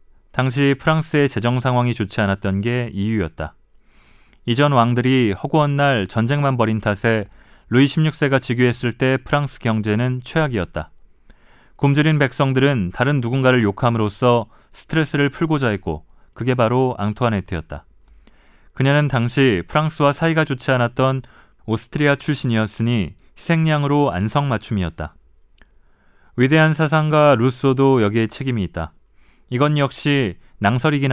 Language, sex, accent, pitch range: Korean, male, native, 105-140 Hz